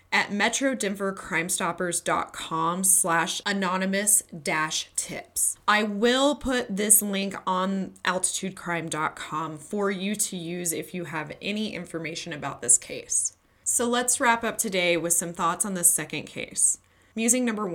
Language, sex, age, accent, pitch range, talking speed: English, female, 20-39, American, 170-220 Hz, 130 wpm